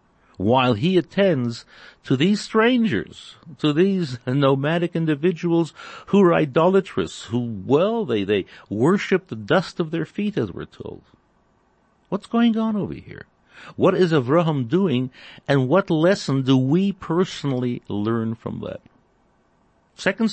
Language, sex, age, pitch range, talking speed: English, male, 60-79, 125-175 Hz, 135 wpm